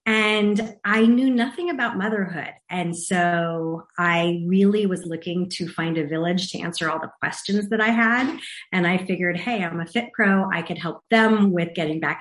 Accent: American